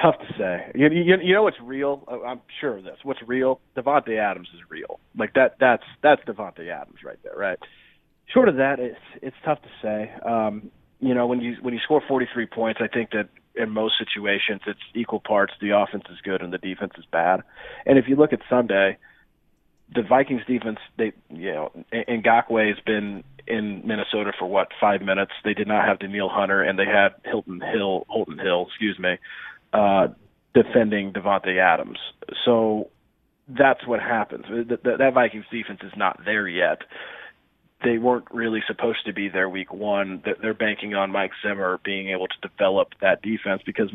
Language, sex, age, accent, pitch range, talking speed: English, male, 30-49, American, 100-125 Hz, 185 wpm